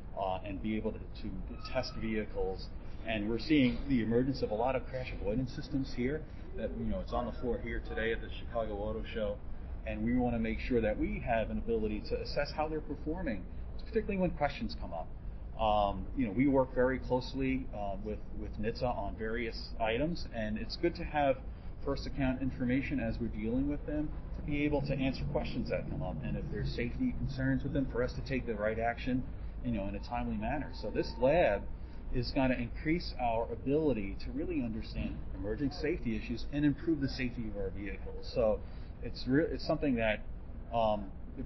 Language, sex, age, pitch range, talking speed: English, male, 40-59, 105-130 Hz, 205 wpm